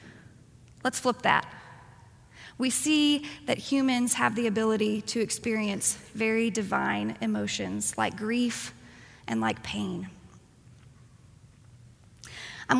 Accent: American